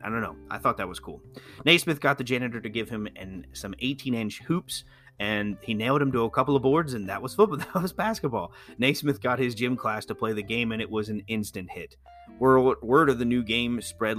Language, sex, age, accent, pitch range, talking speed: English, male, 30-49, American, 100-125 Hz, 235 wpm